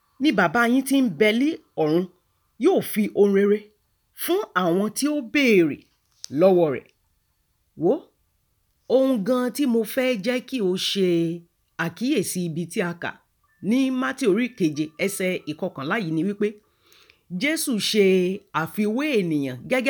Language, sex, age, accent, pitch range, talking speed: English, female, 40-59, Nigerian, 170-250 Hz, 135 wpm